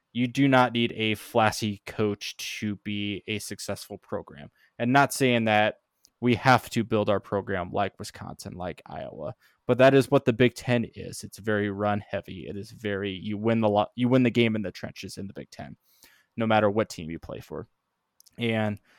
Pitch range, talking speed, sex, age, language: 105-120 Hz, 200 wpm, male, 20-39, English